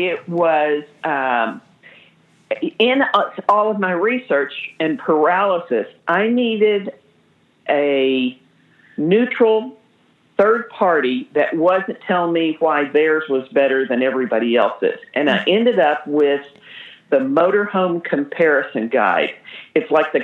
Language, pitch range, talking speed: English, 145-190 Hz, 115 wpm